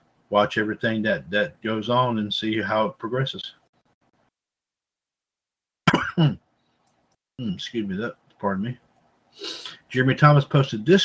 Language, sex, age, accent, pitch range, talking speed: English, male, 50-69, American, 115-145 Hz, 110 wpm